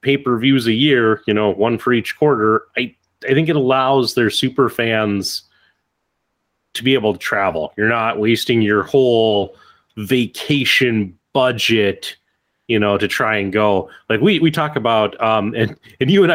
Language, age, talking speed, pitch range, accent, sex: English, 30-49, 165 wpm, 110-135 Hz, American, male